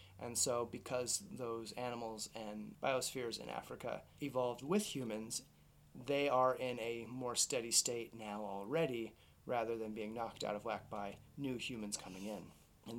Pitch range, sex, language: 115-145 Hz, male, English